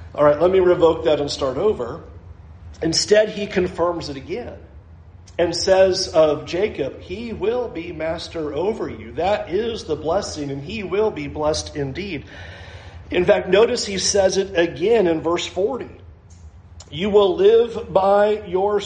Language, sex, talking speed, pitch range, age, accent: English, male, 155 wpm, 150-225 Hz, 40-59, American